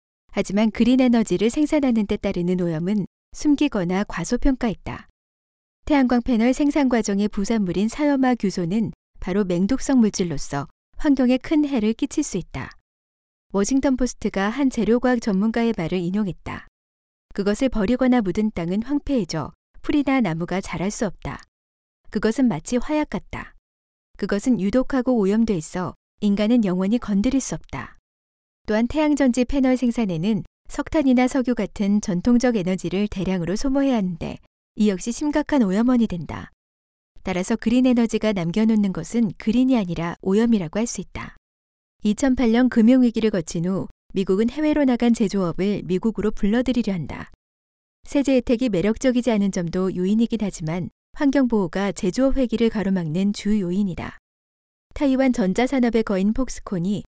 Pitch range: 180-250 Hz